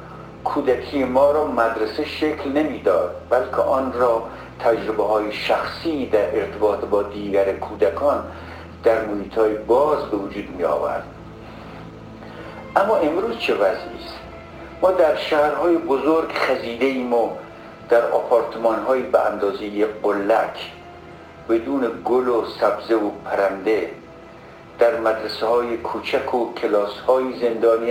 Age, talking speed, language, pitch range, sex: 50-69, 120 wpm, Persian, 100-130 Hz, male